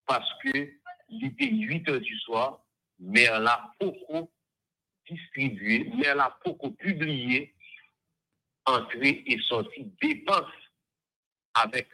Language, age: French, 60-79